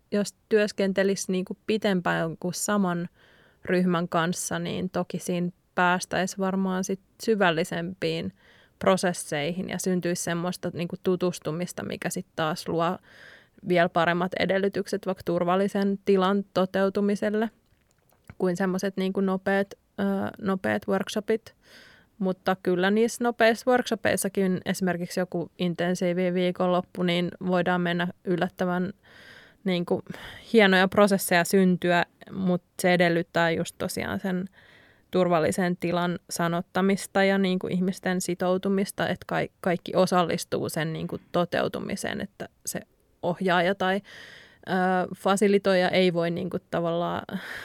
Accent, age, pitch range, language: native, 20-39, 175-195 Hz, Finnish